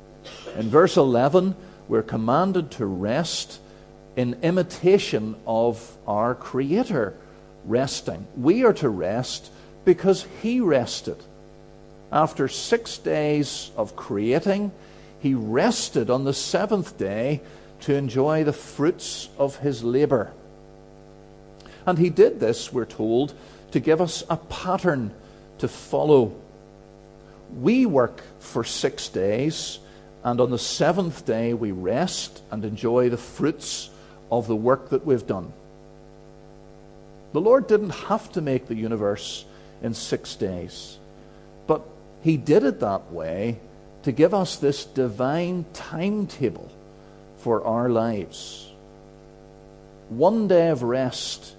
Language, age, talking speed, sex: English, 50-69, 120 wpm, male